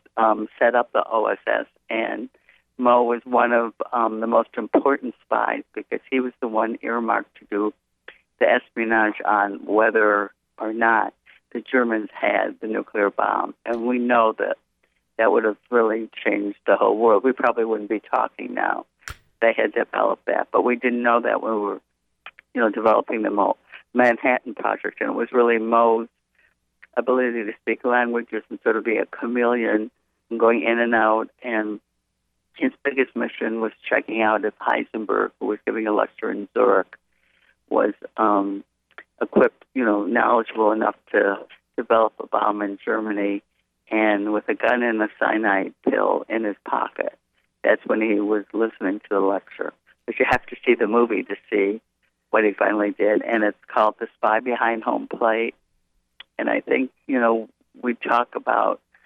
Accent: American